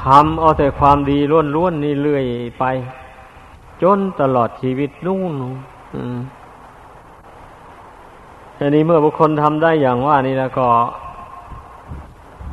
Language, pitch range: Thai, 125-150 Hz